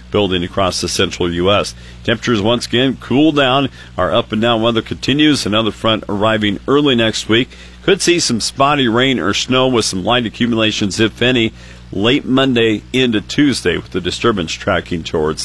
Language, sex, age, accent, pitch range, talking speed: English, male, 50-69, American, 95-120 Hz, 170 wpm